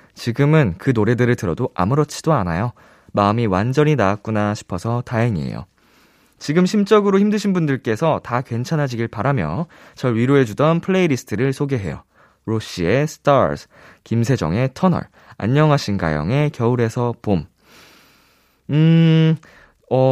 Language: Korean